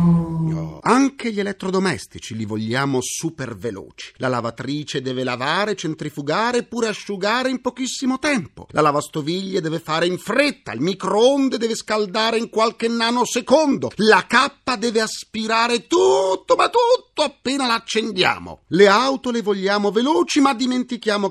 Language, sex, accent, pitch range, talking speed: Italian, male, native, 155-245 Hz, 130 wpm